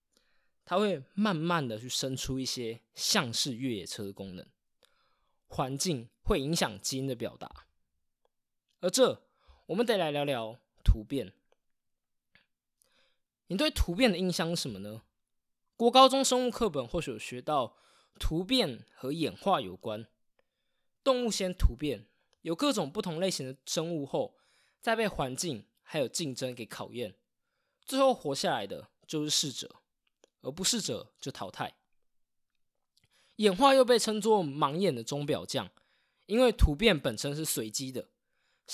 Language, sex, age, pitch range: Chinese, male, 20-39, 125-215 Hz